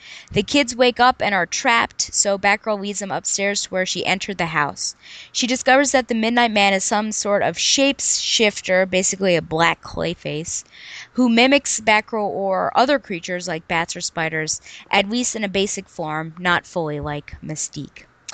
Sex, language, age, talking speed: female, English, 20-39, 175 wpm